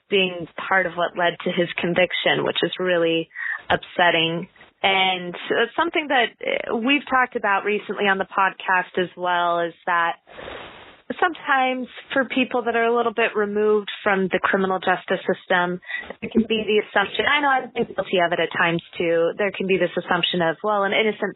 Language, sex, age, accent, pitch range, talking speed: English, female, 20-39, American, 180-225 Hz, 185 wpm